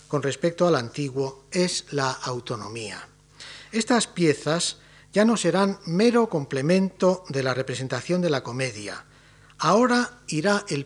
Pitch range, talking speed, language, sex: 135-185 Hz, 120 wpm, Spanish, male